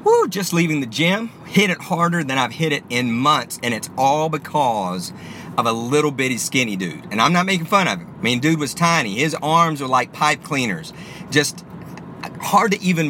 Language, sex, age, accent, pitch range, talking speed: English, male, 40-59, American, 130-175 Hz, 210 wpm